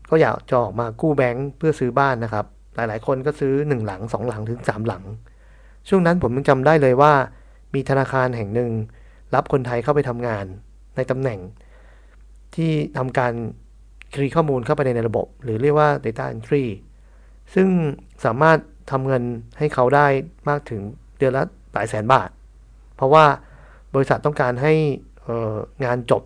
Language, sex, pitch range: Thai, male, 105-145 Hz